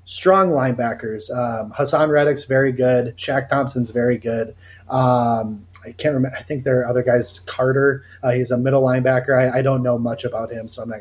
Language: English